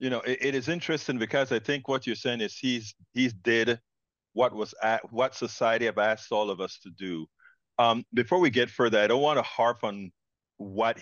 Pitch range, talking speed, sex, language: 105-130 Hz, 220 wpm, male, English